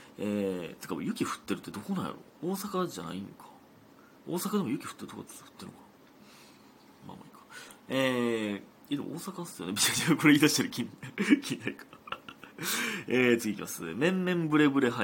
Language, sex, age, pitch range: Japanese, male, 30-49, 105-175 Hz